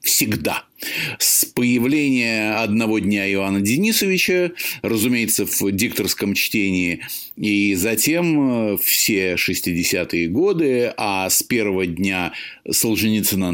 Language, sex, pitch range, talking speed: Russian, male, 95-125 Hz, 95 wpm